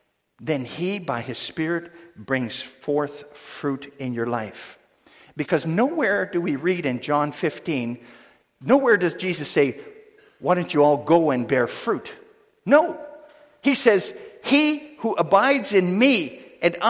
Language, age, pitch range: English, 50-69, 185-285 Hz